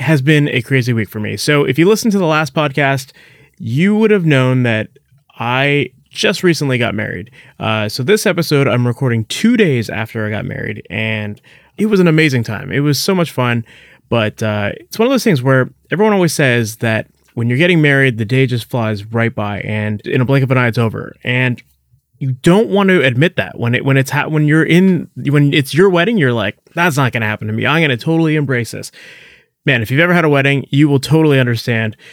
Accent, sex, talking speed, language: American, male, 230 wpm, English